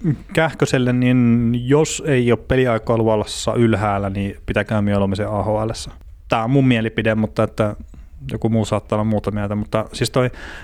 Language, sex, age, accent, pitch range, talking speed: Finnish, male, 30-49, native, 100-115 Hz, 150 wpm